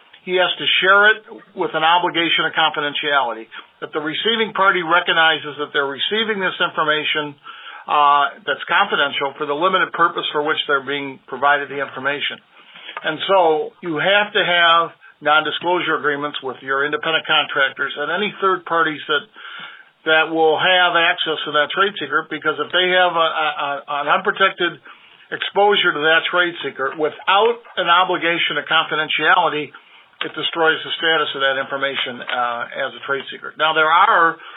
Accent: American